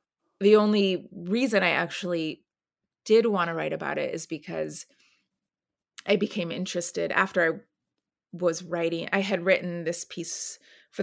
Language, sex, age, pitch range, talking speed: English, female, 30-49, 170-205 Hz, 140 wpm